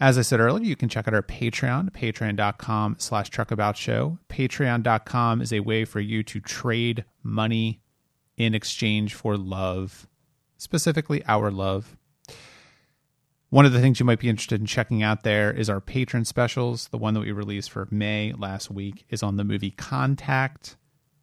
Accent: American